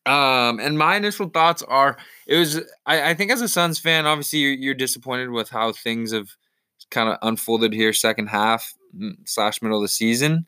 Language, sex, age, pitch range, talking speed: English, male, 20-39, 110-140 Hz, 195 wpm